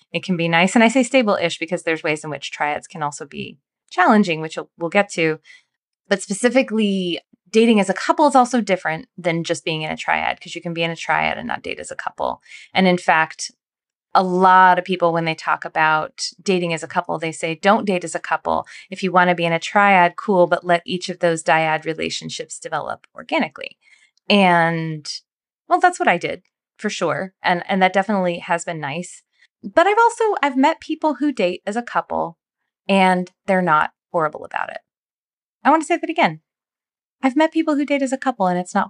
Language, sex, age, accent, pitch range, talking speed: English, female, 20-39, American, 175-230 Hz, 215 wpm